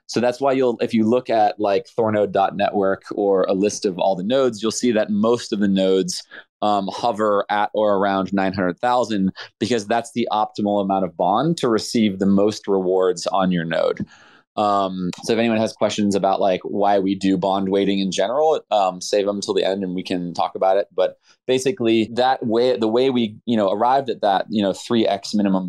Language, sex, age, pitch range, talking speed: English, male, 20-39, 95-115 Hz, 205 wpm